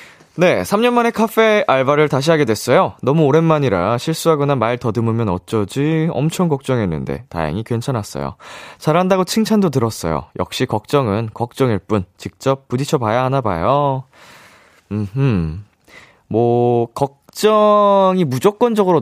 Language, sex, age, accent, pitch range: Korean, male, 20-39, native, 95-150 Hz